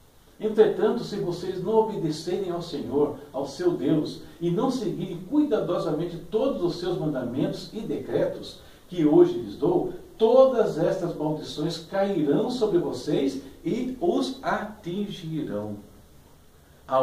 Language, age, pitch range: Portuguese, 60-79, 125-195 Hz